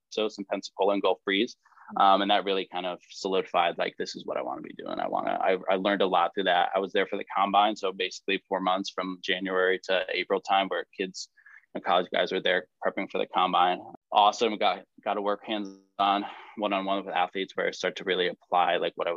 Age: 20-39